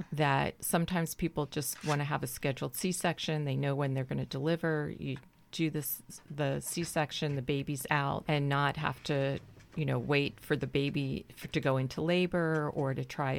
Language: English